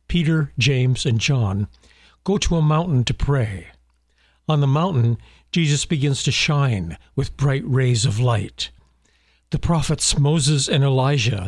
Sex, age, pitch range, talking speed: male, 60-79, 105-150 Hz, 140 wpm